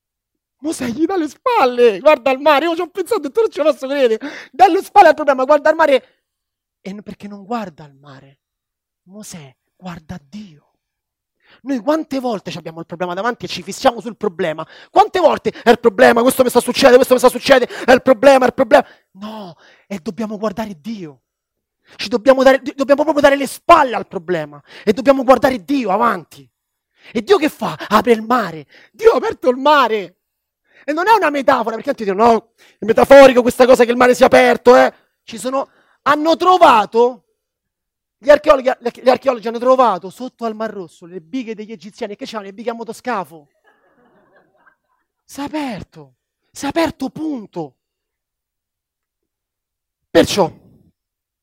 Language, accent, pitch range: Italian, native, 190-280 Hz